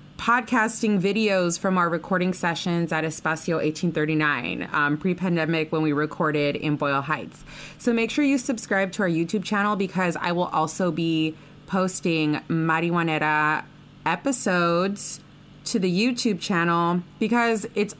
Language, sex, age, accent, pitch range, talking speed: English, female, 20-39, American, 160-205 Hz, 135 wpm